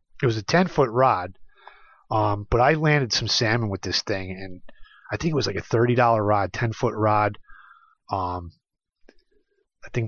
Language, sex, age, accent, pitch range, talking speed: English, male, 30-49, American, 110-145 Hz, 165 wpm